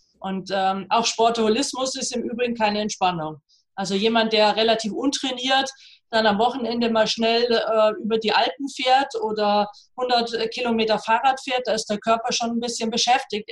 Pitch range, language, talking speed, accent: 215-245 Hz, German, 165 wpm, German